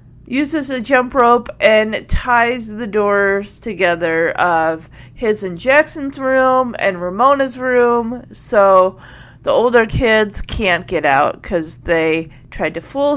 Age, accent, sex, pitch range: 30-49, American, female, 175-260 Hz